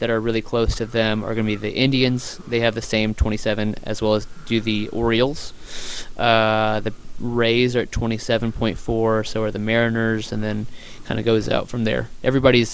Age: 20-39